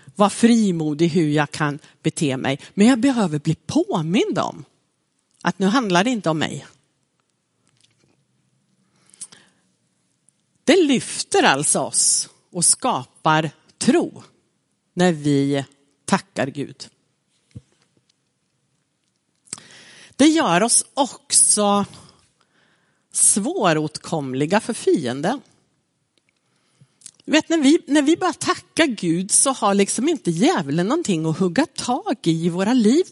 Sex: female